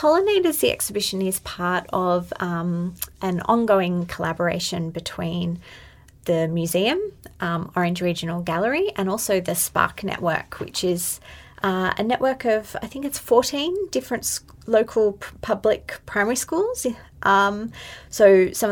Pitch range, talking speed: 180-220 Hz, 135 wpm